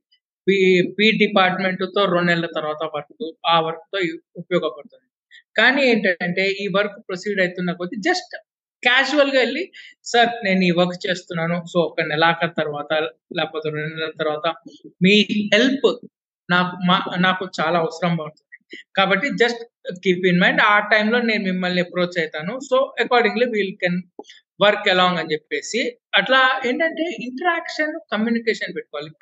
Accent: native